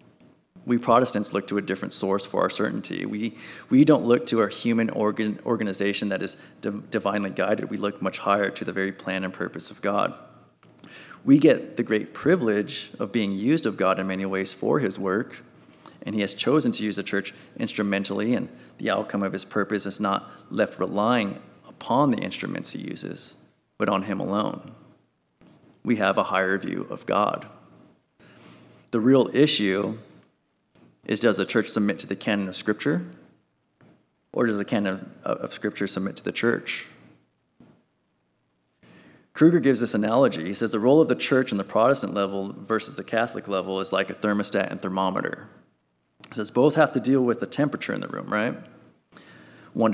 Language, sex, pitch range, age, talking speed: English, male, 95-110 Hz, 30-49, 180 wpm